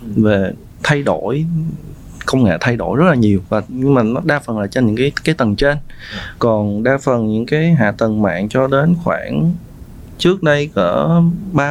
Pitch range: 105-135 Hz